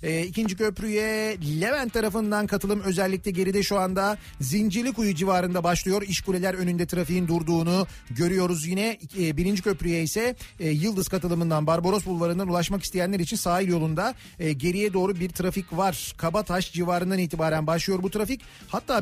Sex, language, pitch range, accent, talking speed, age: male, Turkish, 180-220 Hz, native, 150 wpm, 40-59